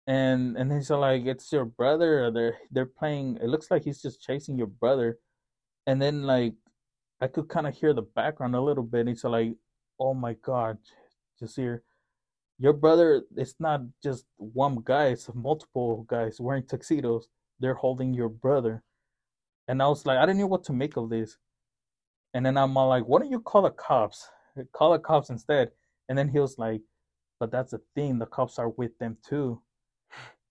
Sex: male